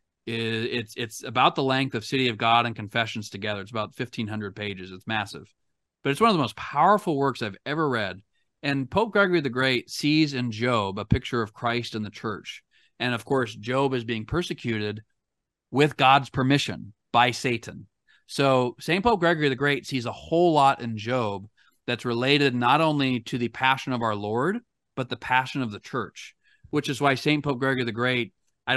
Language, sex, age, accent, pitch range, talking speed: English, male, 30-49, American, 115-135 Hz, 195 wpm